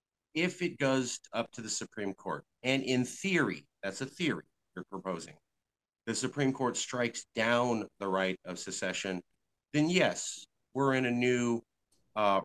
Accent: American